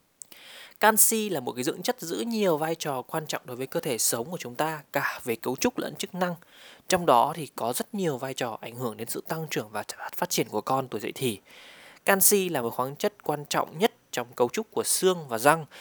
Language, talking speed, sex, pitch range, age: Vietnamese, 245 wpm, male, 130-190 Hz, 20-39